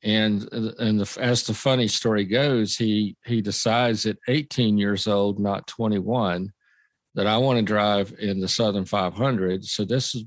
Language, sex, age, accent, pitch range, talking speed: English, male, 50-69, American, 95-110 Hz, 170 wpm